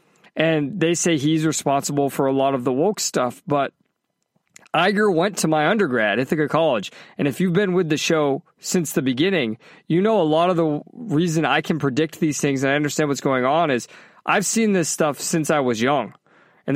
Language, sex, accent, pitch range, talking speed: English, male, American, 135-165 Hz, 210 wpm